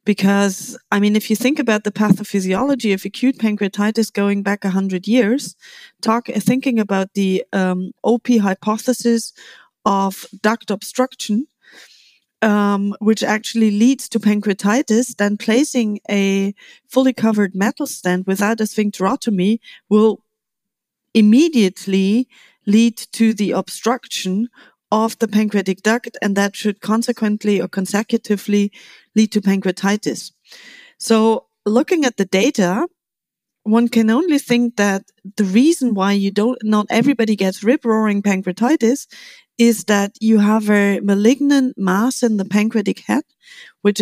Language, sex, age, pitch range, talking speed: English, female, 30-49, 200-240 Hz, 130 wpm